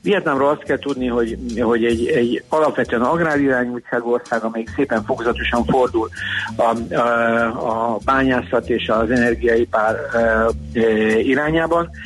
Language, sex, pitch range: Hungarian, male, 115-135 Hz